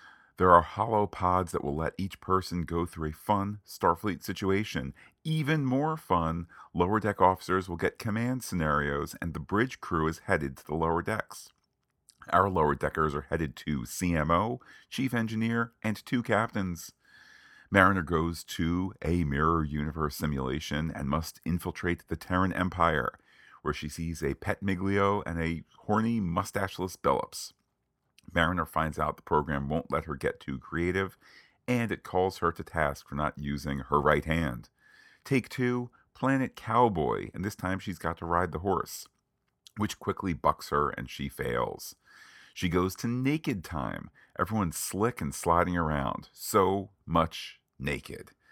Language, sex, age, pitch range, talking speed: English, male, 40-59, 75-100 Hz, 155 wpm